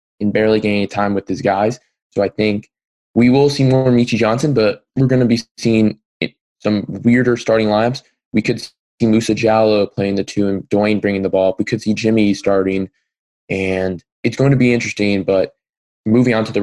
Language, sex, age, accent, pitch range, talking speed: English, male, 20-39, American, 100-115 Hz, 200 wpm